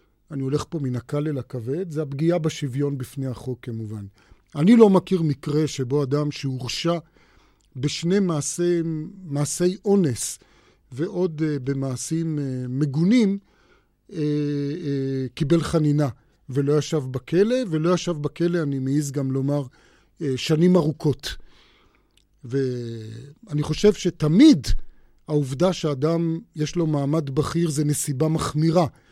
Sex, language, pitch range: male, Hebrew, 135-165 Hz